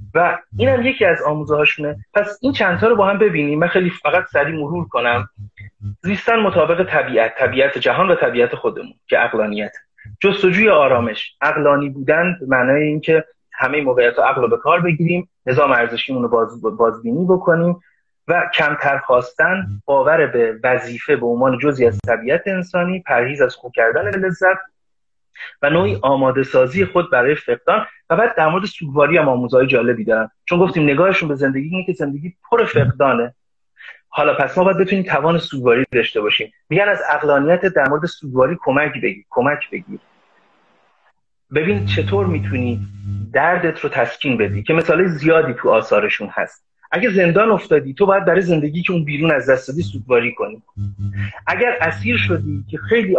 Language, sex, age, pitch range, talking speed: Persian, male, 30-49, 125-190 Hz, 160 wpm